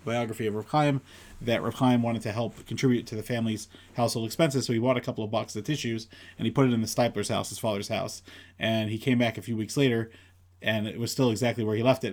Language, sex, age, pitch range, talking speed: English, male, 30-49, 105-130 Hz, 250 wpm